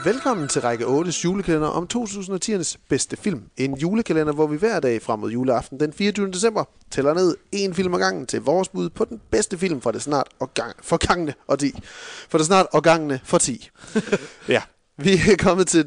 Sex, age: male, 30-49